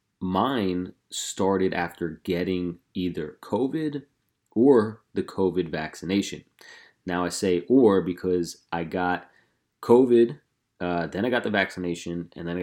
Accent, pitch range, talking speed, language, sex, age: American, 85-100 Hz, 130 wpm, English, male, 30-49